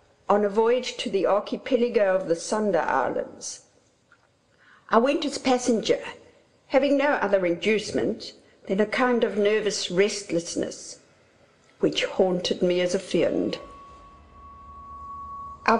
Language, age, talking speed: English, 60-79, 120 wpm